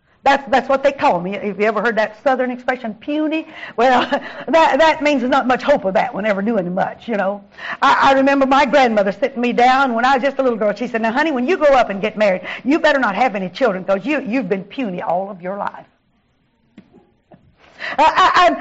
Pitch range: 215-300 Hz